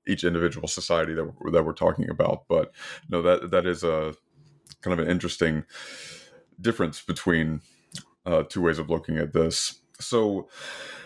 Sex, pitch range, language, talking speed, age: male, 85-100 Hz, English, 170 wpm, 30-49